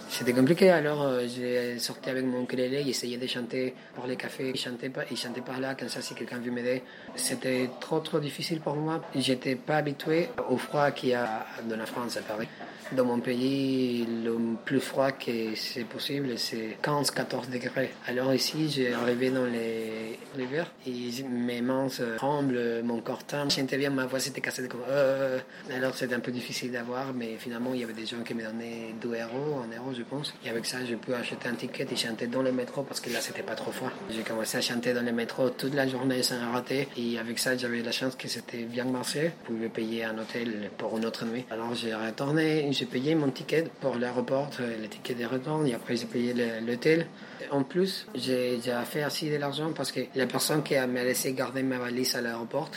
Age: 30-49